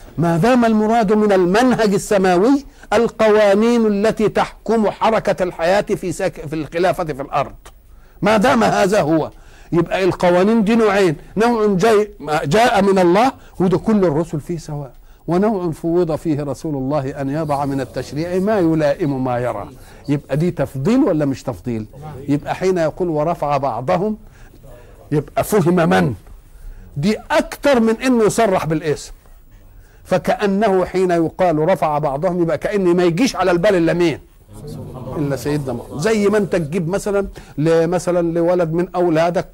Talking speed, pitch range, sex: 140 wpm, 145-185 Hz, male